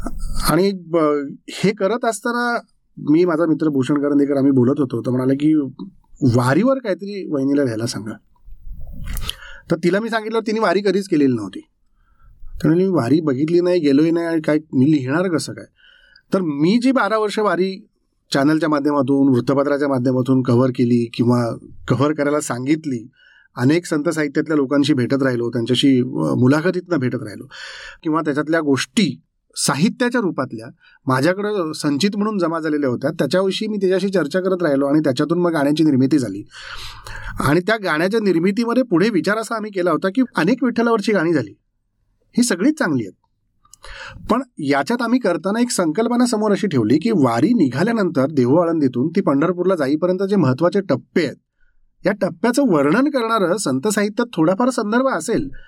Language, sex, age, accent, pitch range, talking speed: Marathi, male, 30-49, native, 140-220 Hz, 150 wpm